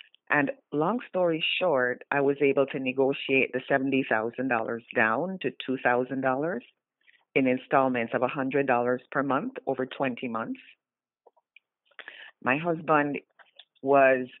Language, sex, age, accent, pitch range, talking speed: English, female, 40-59, American, 125-150 Hz, 110 wpm